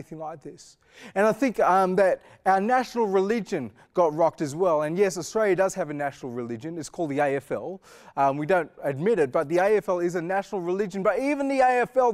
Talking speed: 210 wpm